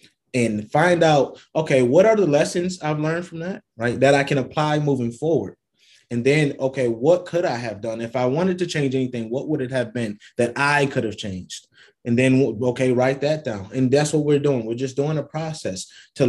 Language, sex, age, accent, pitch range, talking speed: English, male, 20-39, American, 115-145 Hz, 220 wpm